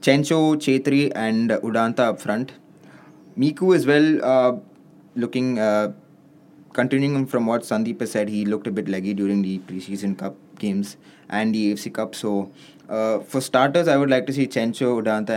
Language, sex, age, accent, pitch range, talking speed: English, male, 20-39, Indian, 105-130 Hz, 165 wpm